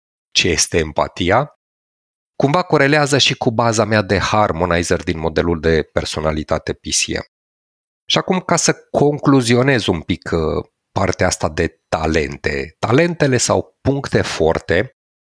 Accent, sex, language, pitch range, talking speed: native, male, Romanian, 90-140 Hz, 120 wpm